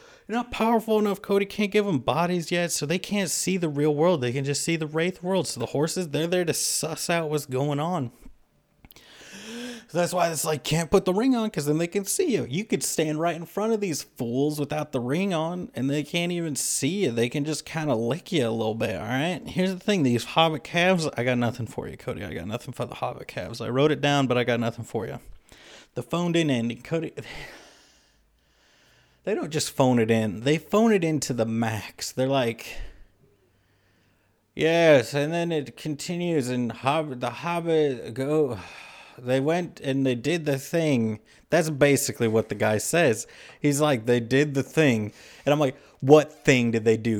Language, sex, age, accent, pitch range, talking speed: English, male, 30-49, American, 125-175 Hz, 210 wpm